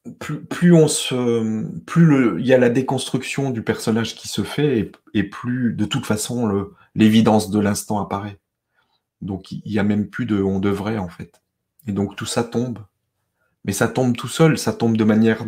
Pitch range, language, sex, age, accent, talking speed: 105-125 Hz, French, male, 30-49, French, 200 wpm